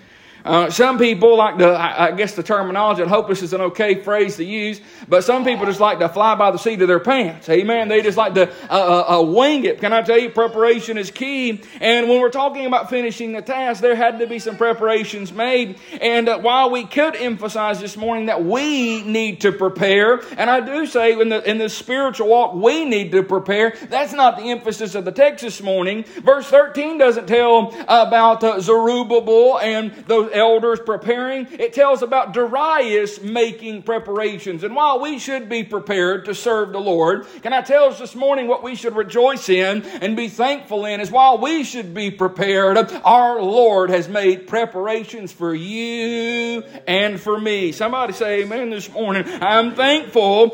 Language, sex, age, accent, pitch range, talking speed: English, male, 40-59, American, 205-245 Hz, 195 wpm